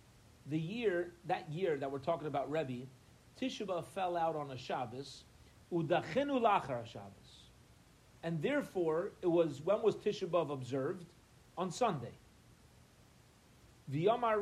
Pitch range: 140-215 Hz